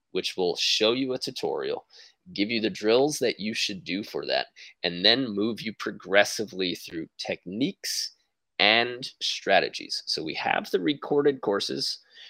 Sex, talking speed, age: male, 150 wpm, 20-39